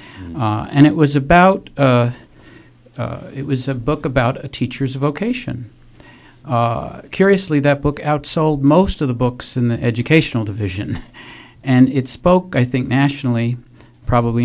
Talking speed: 145 wpm